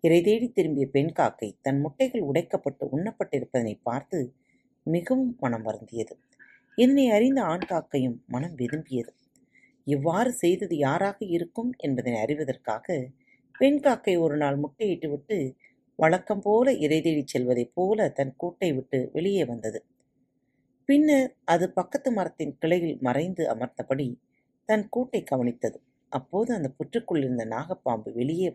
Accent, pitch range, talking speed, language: native, 130-210 Hz, 110 wpm, Tamil